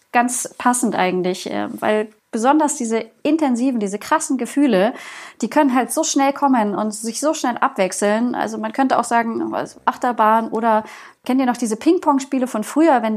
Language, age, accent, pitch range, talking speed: German, 30-49, German, 215-265 Hz, 165 wpm